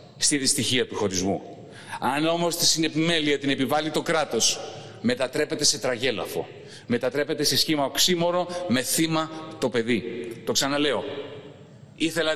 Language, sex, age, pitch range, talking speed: Greek, male, 40-59, 140-180 Hz, 125 wpm